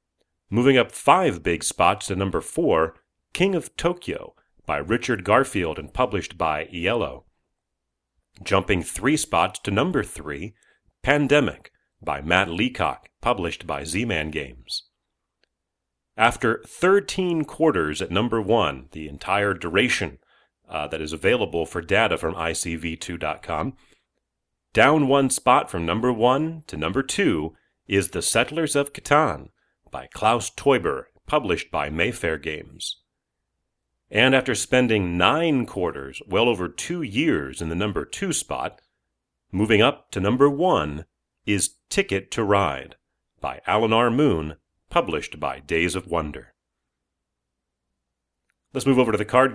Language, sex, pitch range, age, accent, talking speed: English, male, 80-125 Hz, 40-59, American, 130 wpm